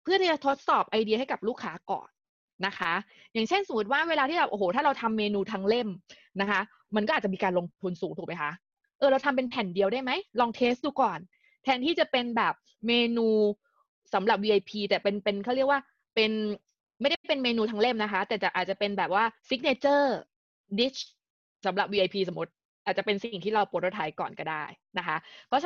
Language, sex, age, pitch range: Thai, female, 20-39, 195-265 Hz